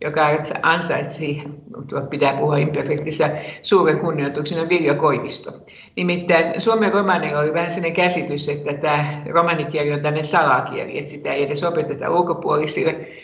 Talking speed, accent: 125 wpm, native